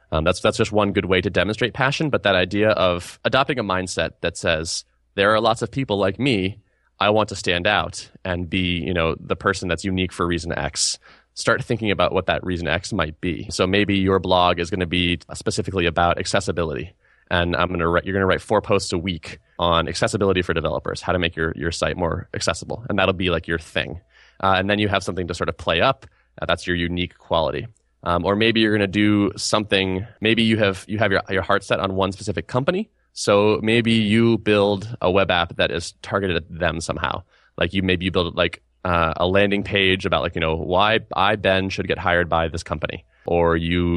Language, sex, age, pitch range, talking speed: English, male, 20-39, 85-105 Hz, 230 wpm